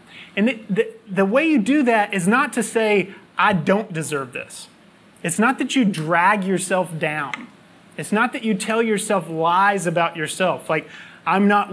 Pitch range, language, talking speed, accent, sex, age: 185-225 Hz, English, 180 wpm, American, male, 30-49